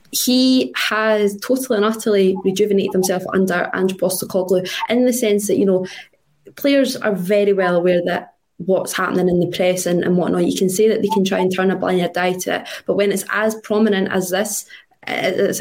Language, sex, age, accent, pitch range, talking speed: English, female, 20-39, British, 185-215 Hz, 200 wpm